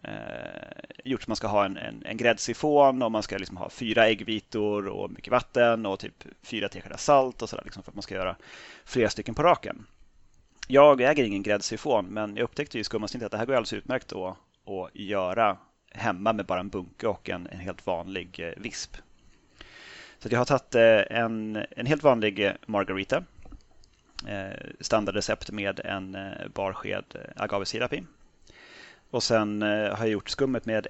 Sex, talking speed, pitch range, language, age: male, 175 wpm, 100-120 Hz, Swedish, 30-49